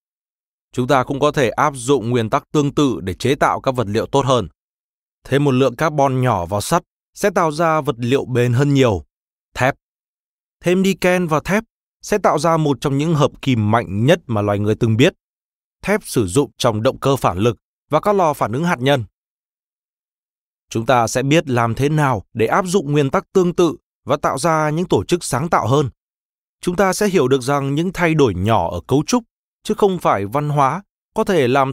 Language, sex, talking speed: Vietnamese, male, 215 wpm